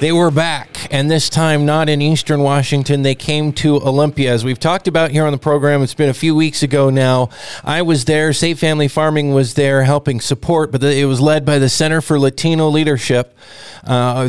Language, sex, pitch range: English, male, 130-155 Hz